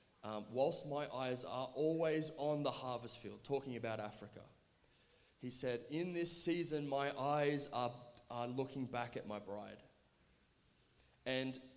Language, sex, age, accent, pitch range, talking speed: English, male, 20-39, Australian, 115-135 Hz, 145 wpm